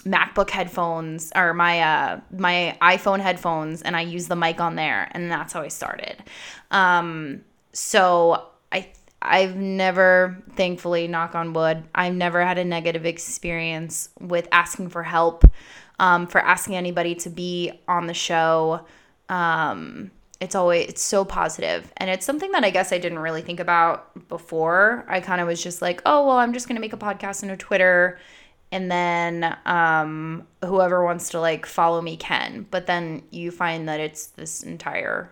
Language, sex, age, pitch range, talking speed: English, female, 20-39, 170-195 Hz, 170 wpm